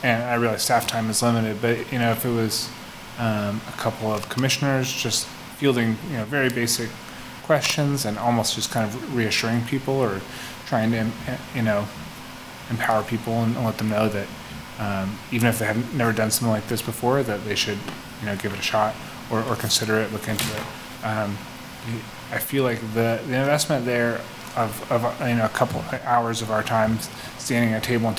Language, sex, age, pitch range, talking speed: English, male, 20-39, 110-125 Hz, 200 wpm